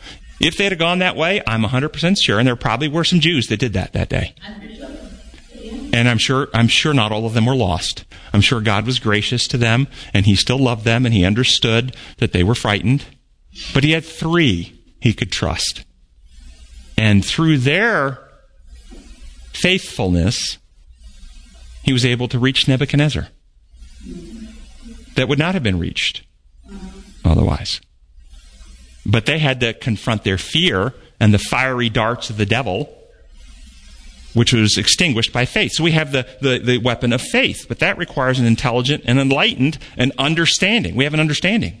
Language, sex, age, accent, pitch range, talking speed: English, male, 50-69, American, 105-170 Hz, 165 wpm